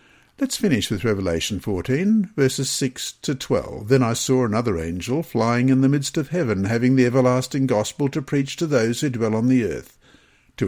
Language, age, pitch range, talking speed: English, 50-69, 115-145 Hz, 190 wpm